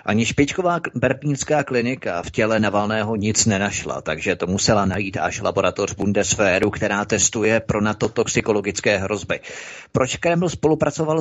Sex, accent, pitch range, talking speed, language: male, native, 105-125 Hz, 130 wpm, Czech